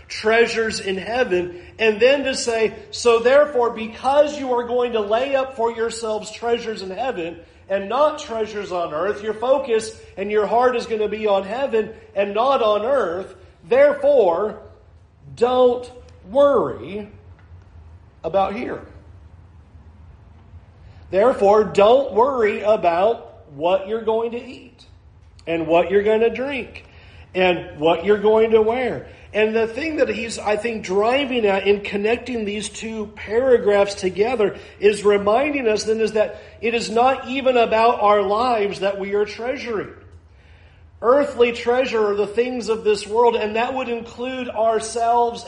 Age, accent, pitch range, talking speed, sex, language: 40-59, American, 200-240 Hz, 150 wpm, male, English